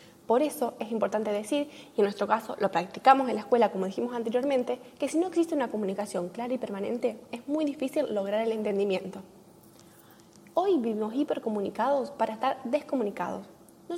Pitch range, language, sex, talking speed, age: 225-285 Hz, Spanish, female, 170 wpm, 10-29